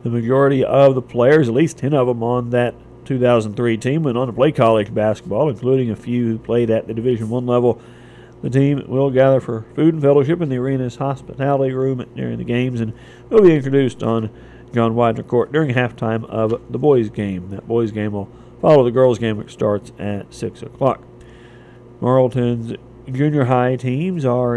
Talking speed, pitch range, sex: 190 wpm, 115-130 Hz, male